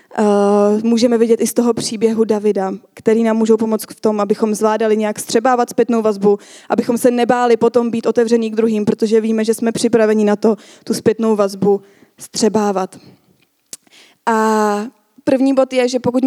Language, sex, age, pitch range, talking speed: Czech, female, 20-39, 215-240 Hz, 165 wpm